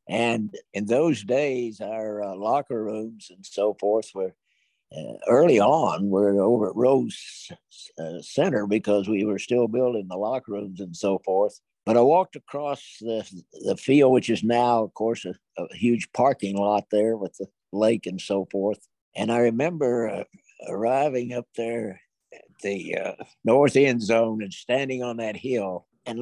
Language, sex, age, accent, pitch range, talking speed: English, male, 60-79, American, 105-130 Hz, 170 wpm